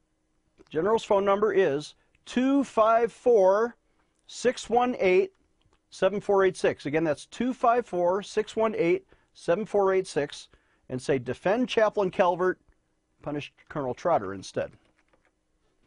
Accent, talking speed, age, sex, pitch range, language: American, 65 wpm, 40-59, male, 145-200 Hz, English